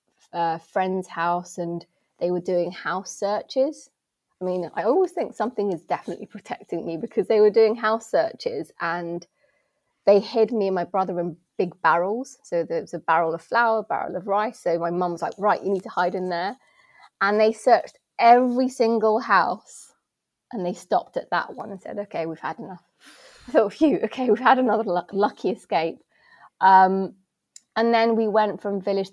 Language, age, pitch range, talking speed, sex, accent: English, 20-39, 175-220 Hz, 190 wpm, female, British